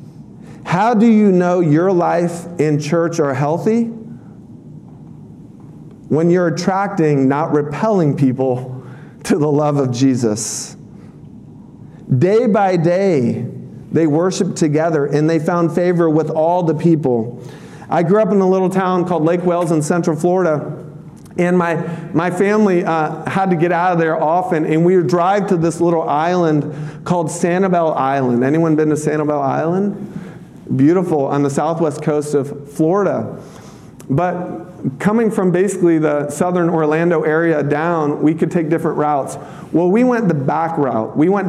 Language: English